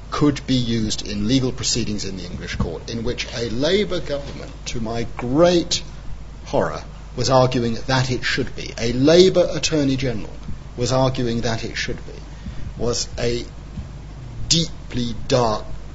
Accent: British